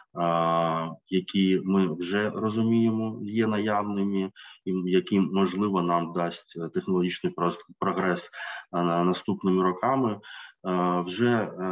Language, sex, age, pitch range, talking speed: Ukrainian, male, 20-39, 90-100 Hz, 80 wpm